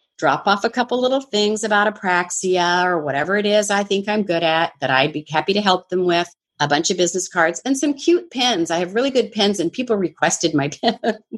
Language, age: English, 40-59